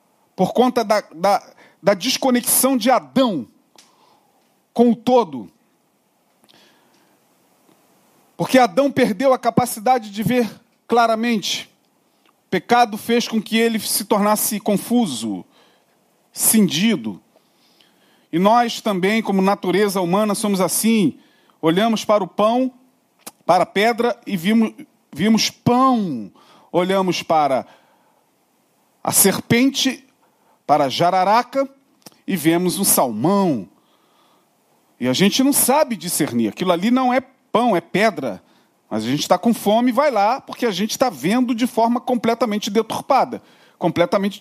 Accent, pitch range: Brazilian, 205-255 Hz